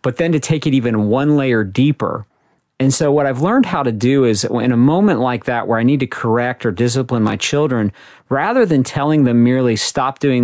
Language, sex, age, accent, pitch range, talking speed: English, male, 40-59, American, 120-155 Hz, 225 wpm